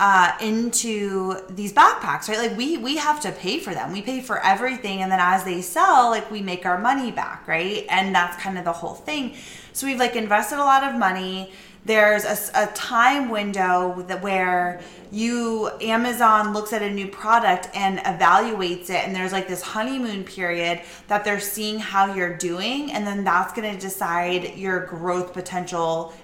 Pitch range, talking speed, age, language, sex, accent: 185-225 Hz, 190 wpm, 20-39, English, female, American